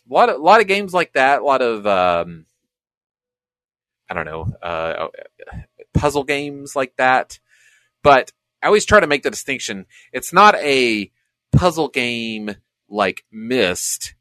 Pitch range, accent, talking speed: 85-130 Hz, American, 150 wpm